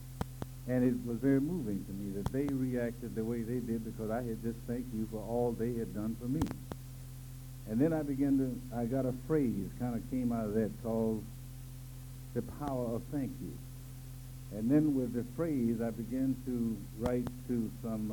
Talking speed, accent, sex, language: 195 wpm, American, male, English